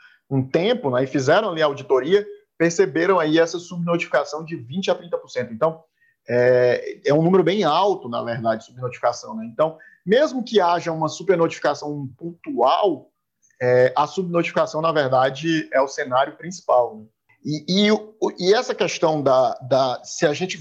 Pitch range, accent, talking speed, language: 135-195 Hz, Brazilian, 155 wpm, English